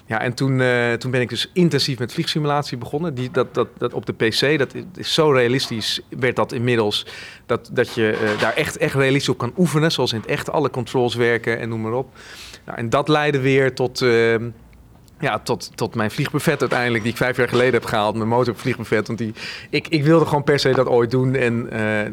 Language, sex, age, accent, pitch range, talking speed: Dutch, male, 40-59, Dutch, 115-140 Hz, 230 wpm